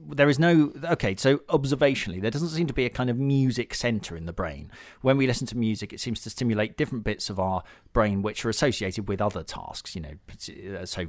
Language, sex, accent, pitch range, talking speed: English, male, British, 95-125 Hz, 225 wpm